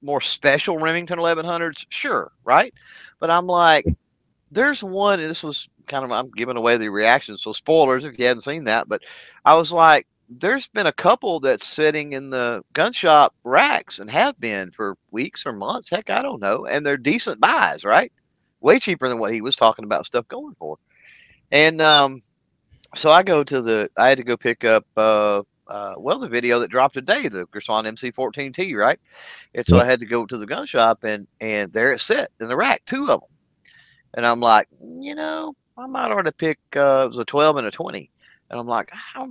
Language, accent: English, American